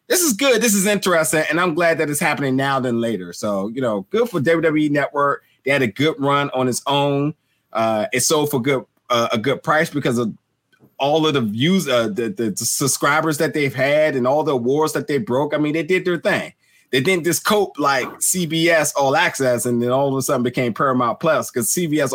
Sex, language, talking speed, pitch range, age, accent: male, English, 230 wpm, 120-165 Hz, 30-49, American